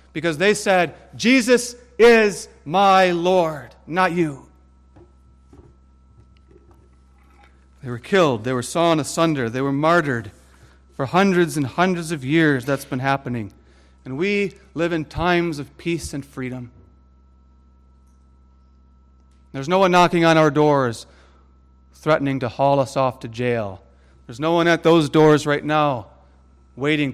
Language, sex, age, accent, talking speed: English, male, 40-59, American, 135 wpm